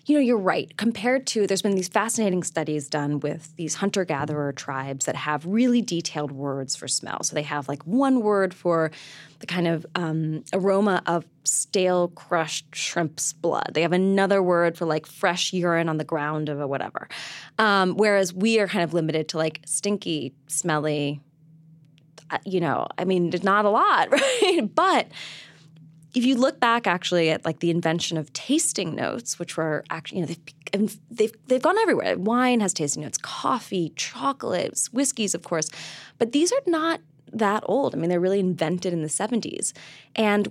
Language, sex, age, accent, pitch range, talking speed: English, female, 20-39, American, 155-200 Hz, 175 wpm